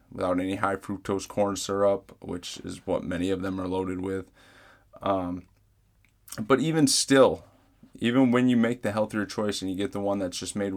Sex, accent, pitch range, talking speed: male, American, 95-115 Hz, 190 wpm